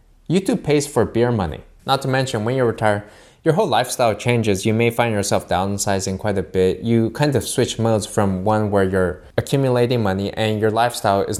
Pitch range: 105-125 Hz